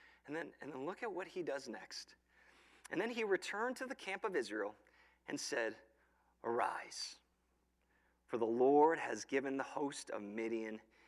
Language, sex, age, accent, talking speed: English, male, 40-59, American, 170 wpm